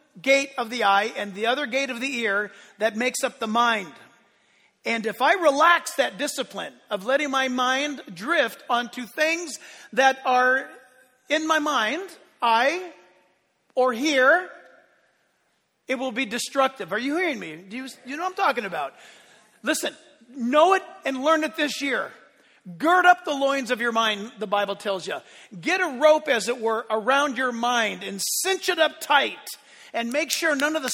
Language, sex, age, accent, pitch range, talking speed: English, male, 40-59, American, 225-305 Hz, 180 wpm